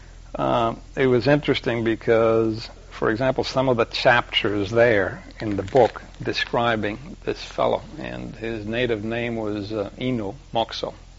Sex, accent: male, American